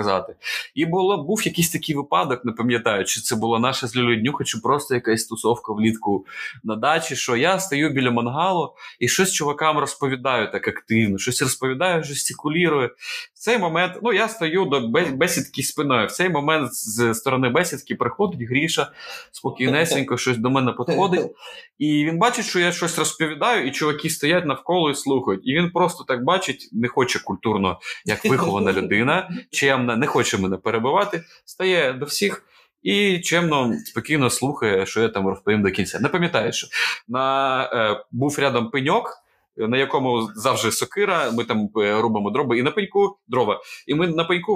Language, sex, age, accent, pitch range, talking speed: Ukrainian, male, 20-39, native, 120-175 Hz, 165 wpm